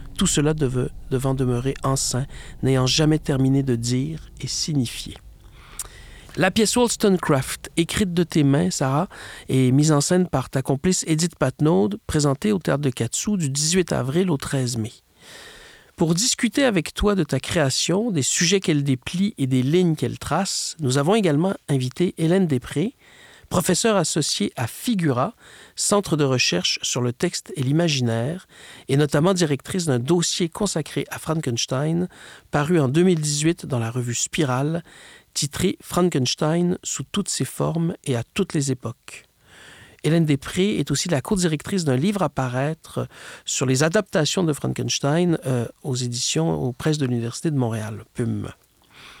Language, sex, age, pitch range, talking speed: French, male, 50-69, 130-180 Hz, 155 wpm